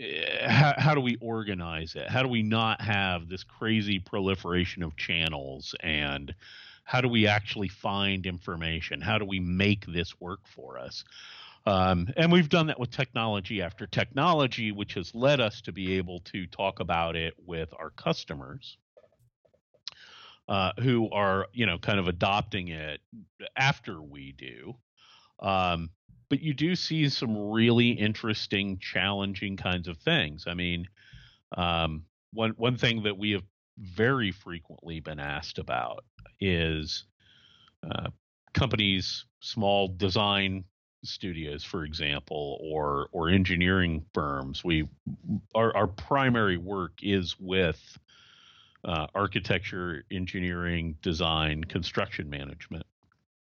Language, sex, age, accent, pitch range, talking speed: English, male, 40-59, American, 85-110 Hz, 130 wpm